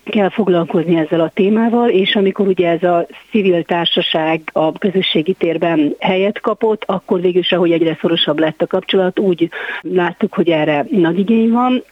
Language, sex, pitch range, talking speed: Hungarian, female, 170-200 Hz, 160 wpm